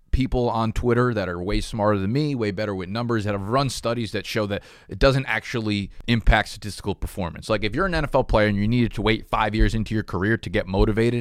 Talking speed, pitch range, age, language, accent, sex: 240 wpm, 105-125 Hz, 30-49, English, American, male